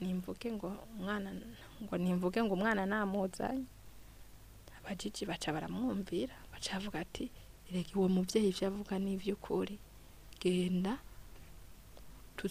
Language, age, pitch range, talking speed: French, 20-39, 175-210 Hz, 110 wpm